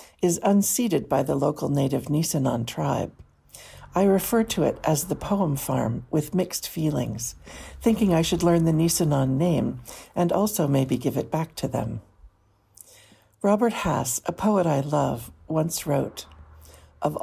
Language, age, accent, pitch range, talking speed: English, 60-79, American, 140-190 Hz, 150 wpm